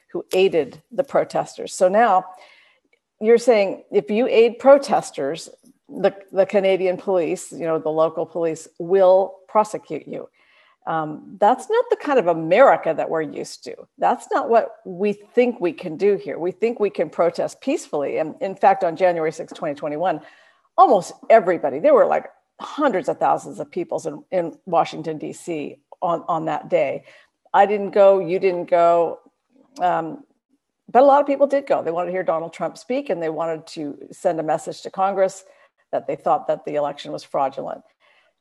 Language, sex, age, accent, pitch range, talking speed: English, female, 50-69, American, 165-230 Hz, 175 wpm